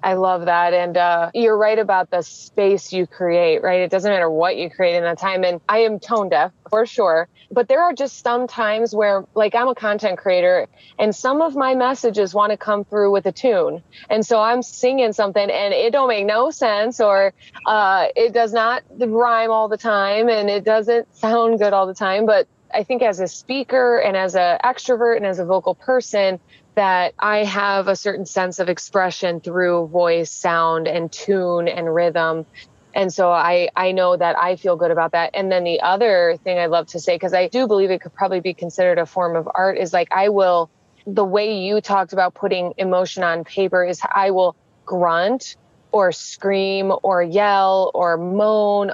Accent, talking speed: American, 205 wpm